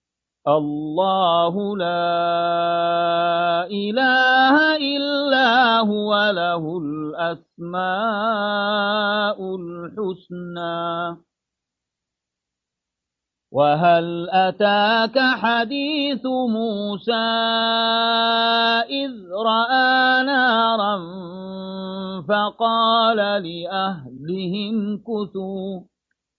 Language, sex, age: Arabic, male, 40-59